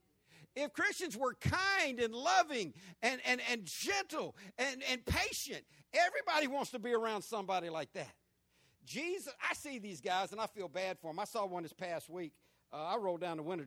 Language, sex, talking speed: English, male, 195 wpm